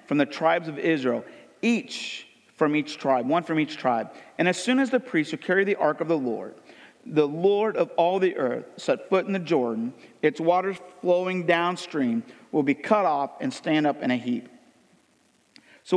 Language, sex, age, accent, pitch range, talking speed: English, male, 50-69, American, 135-185 Hz, 195 wpm